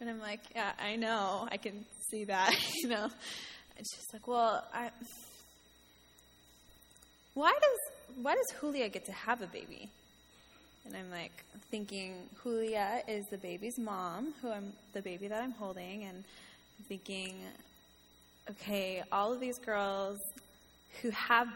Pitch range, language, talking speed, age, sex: 175-235 Hz, English, 150 wpm, 10-29, female